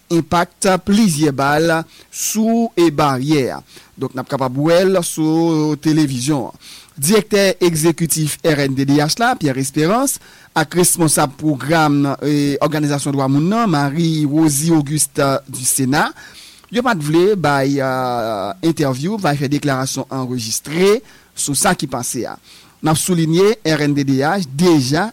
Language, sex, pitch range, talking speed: English, male, 140-175 Hz, 105 wpm